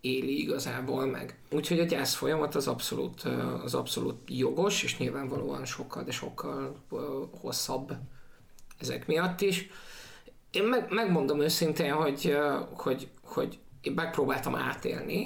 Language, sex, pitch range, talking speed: Hungarian, male, 135-190 Hz, 120 wpm